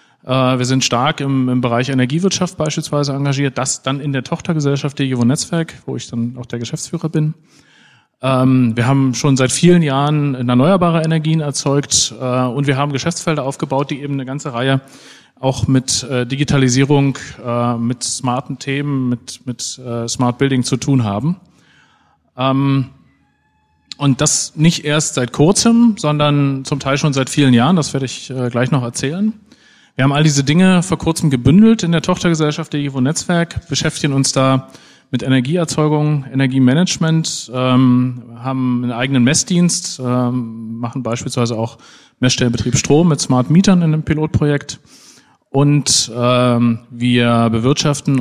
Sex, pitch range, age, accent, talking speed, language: male, 125-155 Hz, 40-59, German, 150 wpm, German